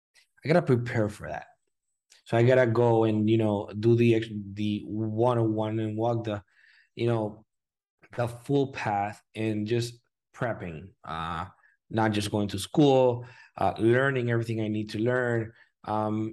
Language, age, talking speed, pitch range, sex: English, 20-39, 150 wpm, 110-125 Hz, male